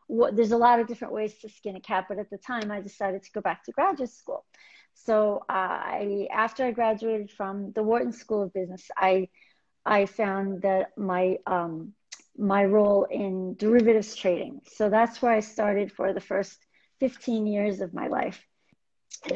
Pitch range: 200-240 Hz